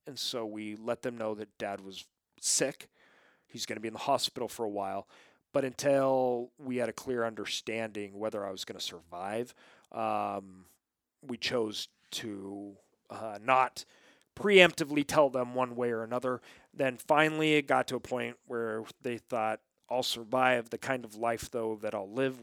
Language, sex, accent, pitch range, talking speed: English, male, American, 105-130 Hz, 175 wpm